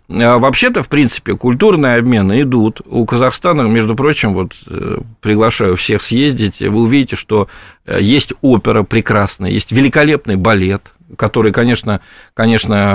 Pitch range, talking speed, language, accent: 100-125 Hz, 115 wpm, Russian, native